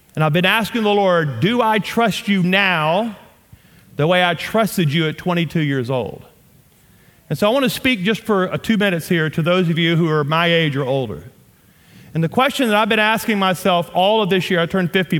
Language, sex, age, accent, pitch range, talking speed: English, male, 40-59, American, 160-195 Hz, 220 wpm